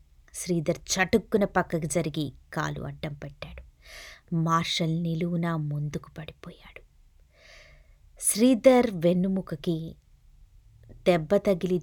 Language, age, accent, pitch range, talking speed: Telugu, 20-39, native, 145-185 Hz, 70 wpm